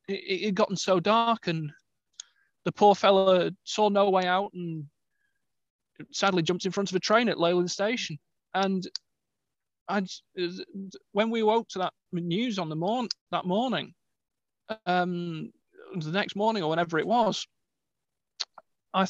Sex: male